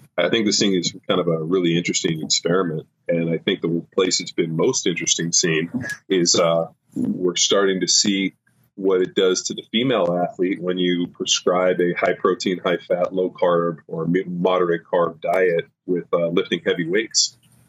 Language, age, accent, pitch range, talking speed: English, 30-49, American, 85-90 Hz, 180 wpm